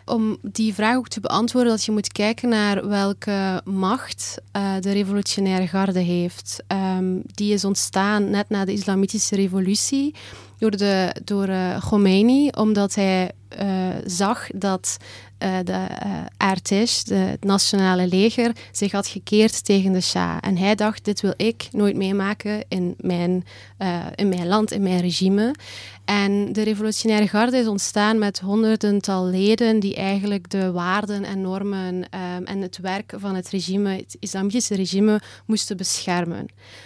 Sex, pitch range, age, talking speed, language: female, 190-215 Hz, 20-39, 150 wpm, Dutch